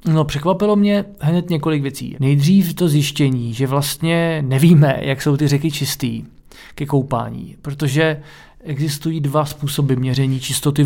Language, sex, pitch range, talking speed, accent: Czech, male, 135-150 Hz, 140 wpm, native